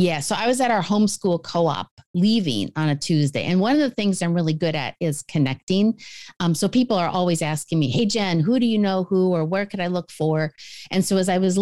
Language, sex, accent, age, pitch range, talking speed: English, female, American, 40-59, 150-195 Hz, 250 wpm